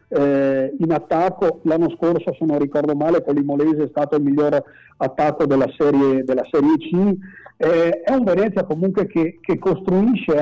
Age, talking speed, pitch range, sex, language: 50-69, 155 wpm, 150-190 Hz, male, Italian